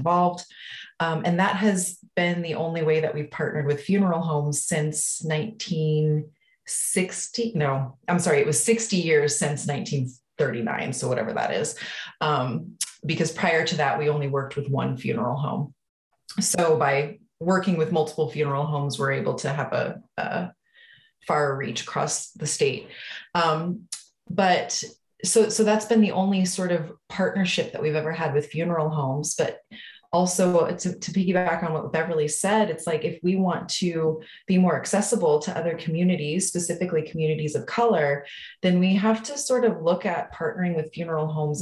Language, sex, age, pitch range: English, female, 30-49, 155-185 Hz